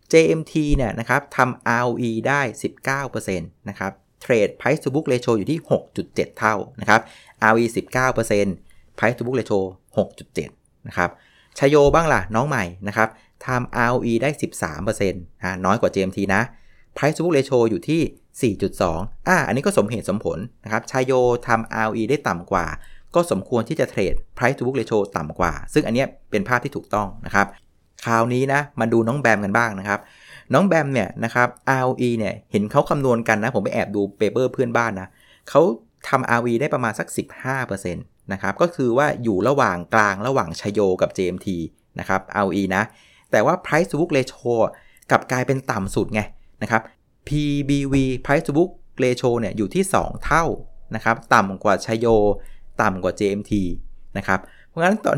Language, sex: Thai, male